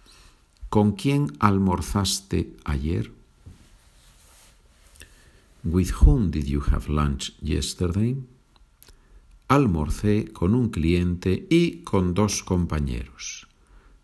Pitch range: 80-110 Hz